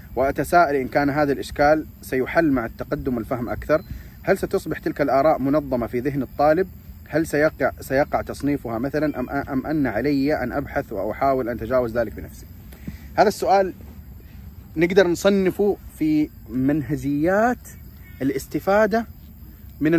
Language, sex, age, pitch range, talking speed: Arabic, male, 30-49, 110-180 Hz, 125 wpm